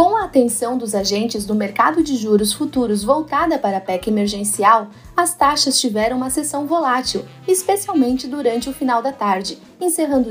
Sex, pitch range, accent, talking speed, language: female, 220-295 Hz, Brazilian, 165 wpm, Portuguese